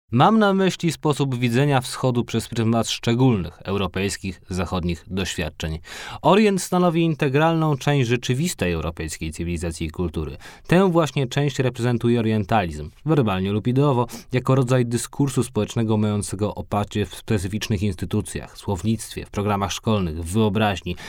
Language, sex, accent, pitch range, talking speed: Polish, male, native, 95-130 Hz, 130 wpm